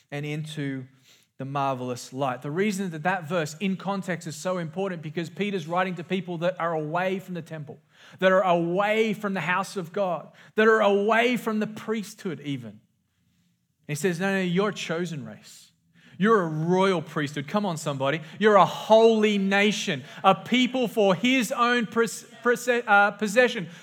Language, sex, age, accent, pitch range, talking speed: English, male, 30-49, Australian, 175-230 Hz, 165 wpm